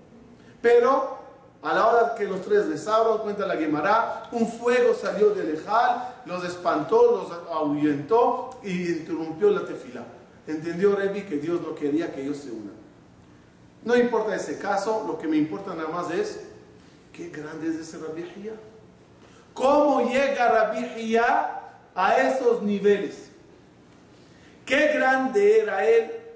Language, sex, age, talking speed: Spanish, male, 40-59, 140 wpm